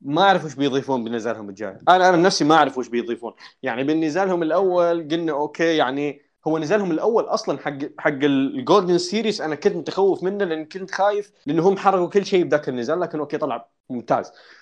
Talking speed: 185 wpm